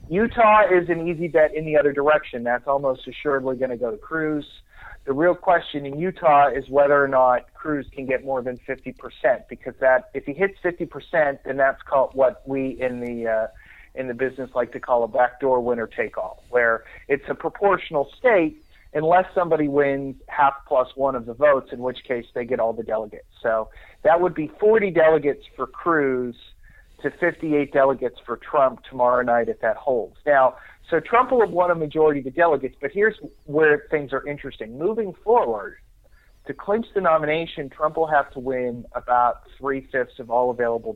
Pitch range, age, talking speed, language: 125-160 Hz, 40-59, 190 wpm, English